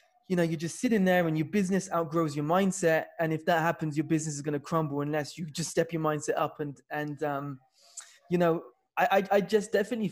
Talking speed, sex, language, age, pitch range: 235 wpm, male, English, 20-39, 150-180 Hz